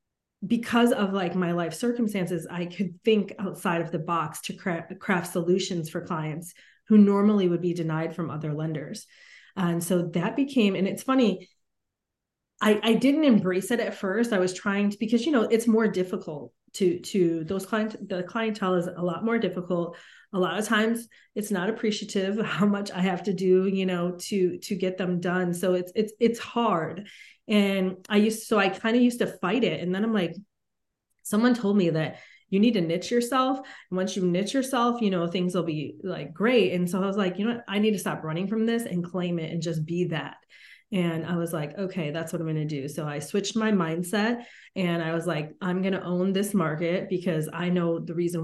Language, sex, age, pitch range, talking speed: English, female, 30-49, 175-215 Hz, 220 wpm